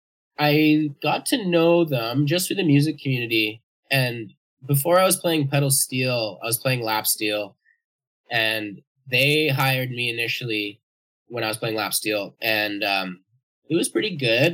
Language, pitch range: English, 110-145 Hz